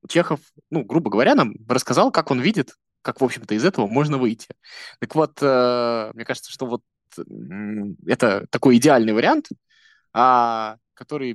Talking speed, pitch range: 145 wpm, 115-140 Hz